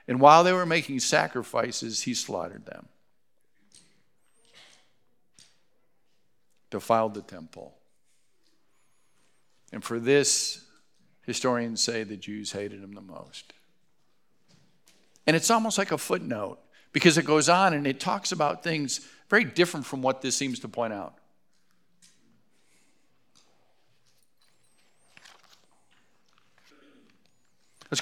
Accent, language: American, English